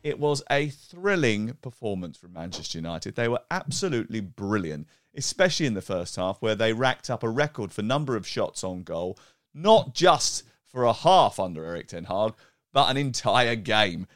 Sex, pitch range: male, 95-140 Hz